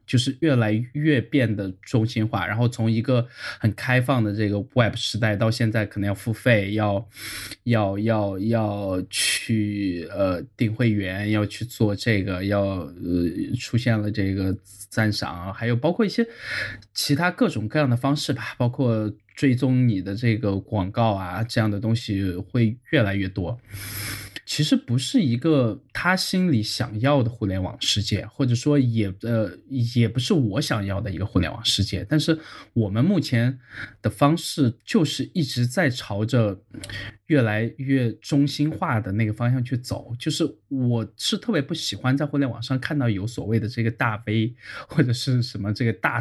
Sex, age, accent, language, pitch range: male, 20-39, native, Chinese, 105-130 Hz